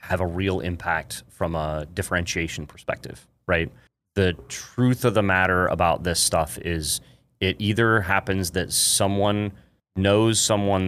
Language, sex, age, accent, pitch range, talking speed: English, male, 30-49, American, 90-105 Hz, 140 wpm